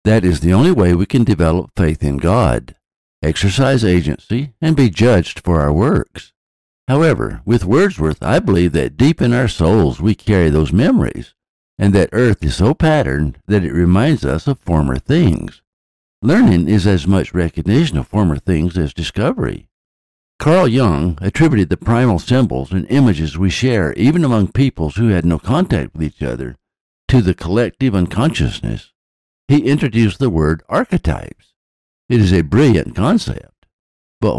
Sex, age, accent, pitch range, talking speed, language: male, 60-79, American, 80-115 Hz, 160 wpm, English